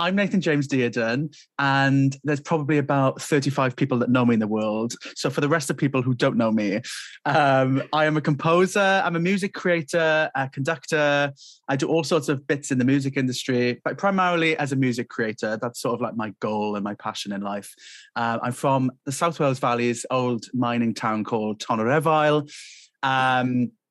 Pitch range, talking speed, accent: 120-155 Hz, 195 wpm, British